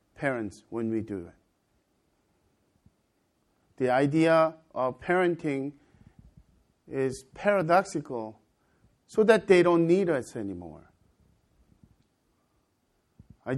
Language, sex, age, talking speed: English, male, 50-69, 85 wpm